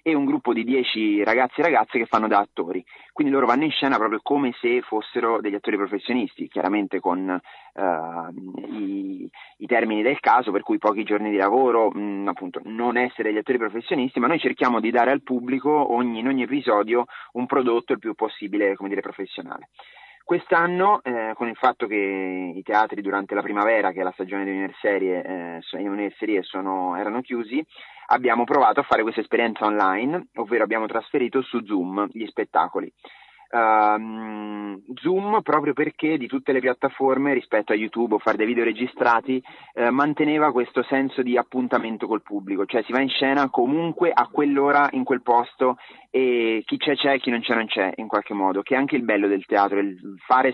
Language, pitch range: Italian, 105-135 Hz